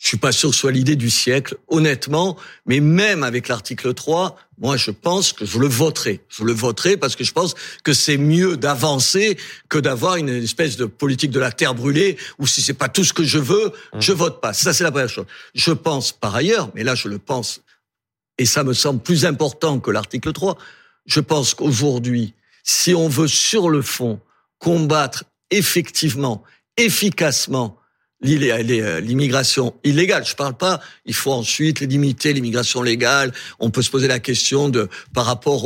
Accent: French